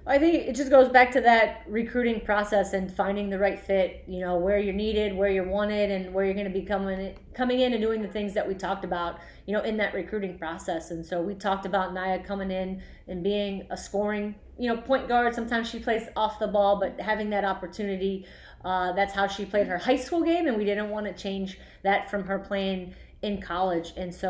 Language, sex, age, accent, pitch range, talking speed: English, female, 30-49, American, 190-215 Hz, 230 wpm